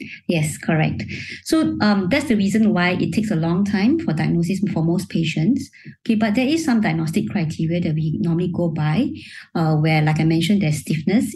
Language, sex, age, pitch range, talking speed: English, male, 20-39, 155-195 Hz, 195 wpm